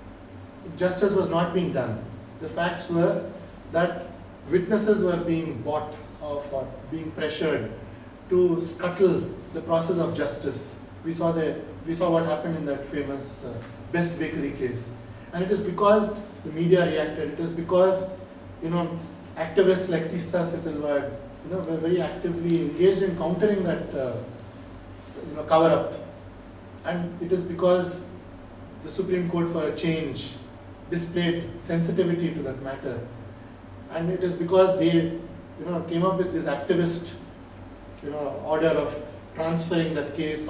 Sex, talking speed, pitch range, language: male, 145 wpm, 135-185 Hz, Urdu